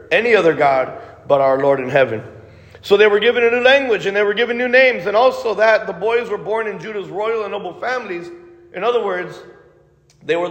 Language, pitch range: English, 185-310 Hz